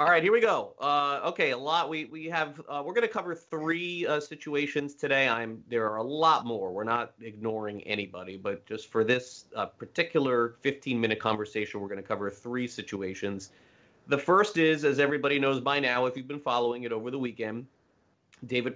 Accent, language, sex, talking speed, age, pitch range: American, English, male, 200 wpm, 30-49, 105-130 Hz